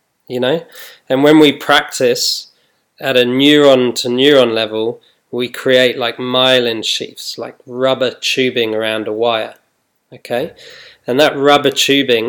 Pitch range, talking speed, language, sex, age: 115-135 Hz, 125 wpm, English, male, 20-39